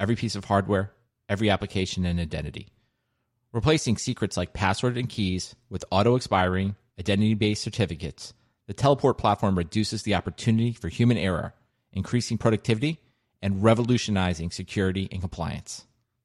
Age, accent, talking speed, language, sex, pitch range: 30-49, American, 125 wpm, English, male, 95-125 Hz